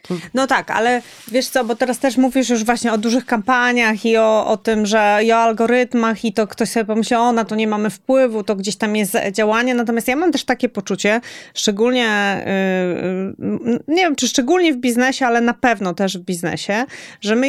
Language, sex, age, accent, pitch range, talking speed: Polish, female, 30-49, native, 190-245 Hz, 205 wpm